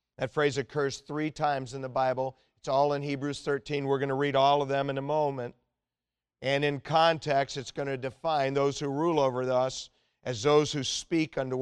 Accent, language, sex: American, English, male